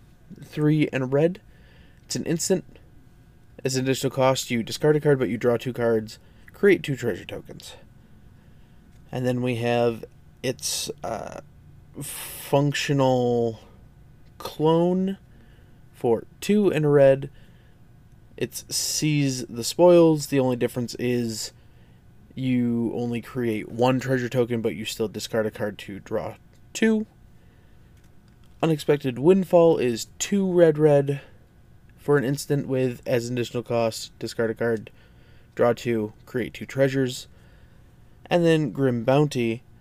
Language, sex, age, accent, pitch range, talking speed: English, male, 20-39, American, 115-145 Hz, 130 wpm